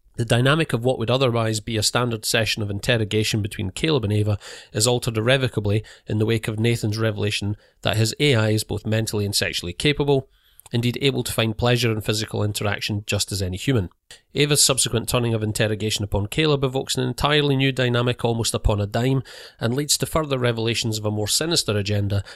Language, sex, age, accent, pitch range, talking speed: English, male, 40-59, British, 105-125 Hz, 195 wpm